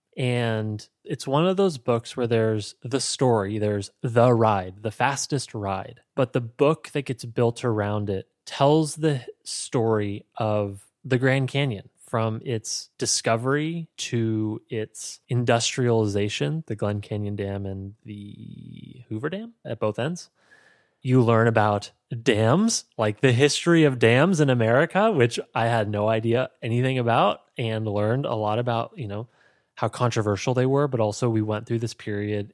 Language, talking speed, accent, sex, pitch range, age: English, 155 wpm, American, male, 110-145 Hz, 20-39